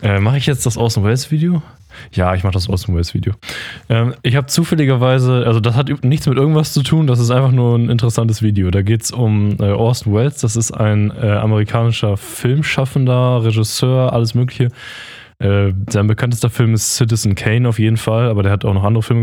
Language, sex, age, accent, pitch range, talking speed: German, male, 10-29, German, 105-125 Hz, 185 wpm